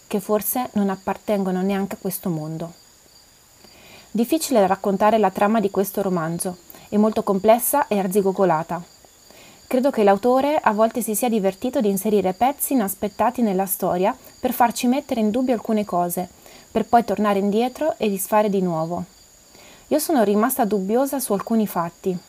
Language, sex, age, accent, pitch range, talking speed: Italian, female, 20-39, native, 195-245 Hz, 150 wpm